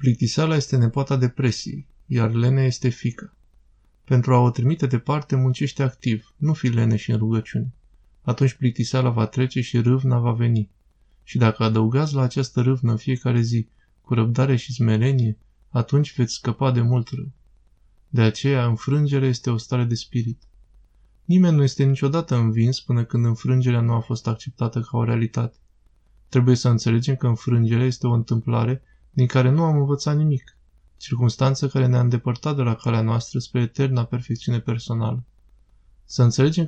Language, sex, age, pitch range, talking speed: Romanian, male, 20-39, 115-135 Hz, 160 wpm